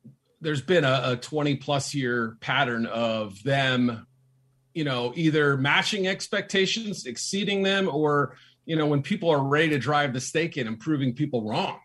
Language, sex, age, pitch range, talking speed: English, male, 40-59, 125-150 Hz, 165 wpm